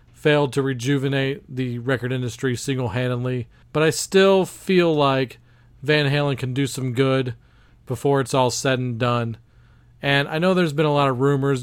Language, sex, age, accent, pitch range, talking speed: English, male, 40-59, American, 120-145 Hz, 170 wpm